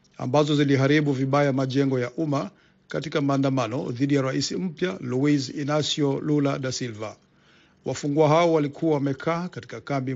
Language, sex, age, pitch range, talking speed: Swahili, male, 50-69, 130-155 Hz, 135 wpm